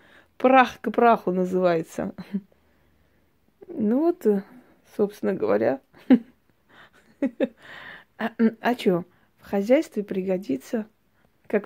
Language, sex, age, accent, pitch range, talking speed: Russian, female, 20-39, native, 190-255 Hz, 75 wpm